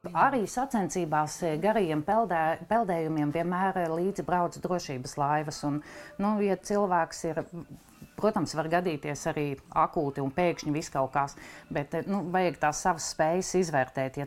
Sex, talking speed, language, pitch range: female, 135 wpm, English, 150-180 Hz